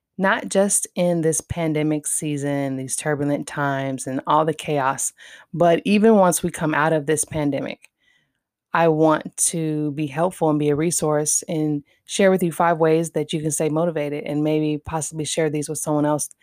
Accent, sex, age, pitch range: American, female, 20-39, 150-175 Hz